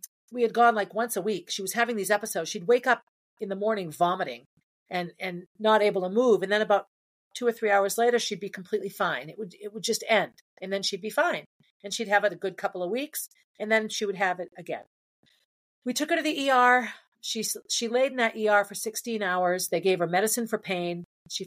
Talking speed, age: 240 wpm, 40-59